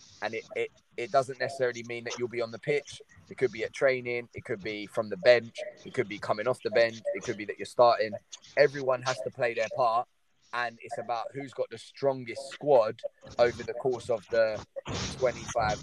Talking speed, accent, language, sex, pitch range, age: 215 wpm, British, English, male, 115-150 Hz, 20-39